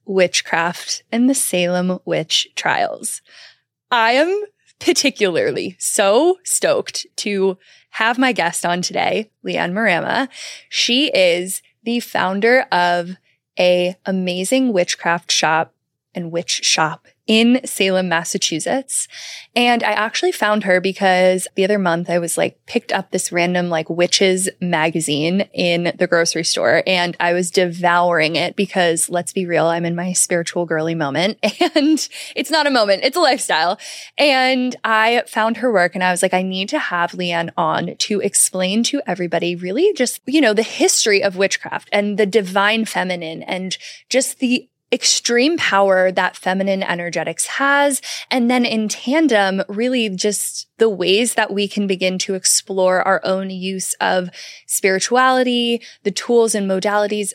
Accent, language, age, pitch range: American, English, 20-39, 180-235 Hz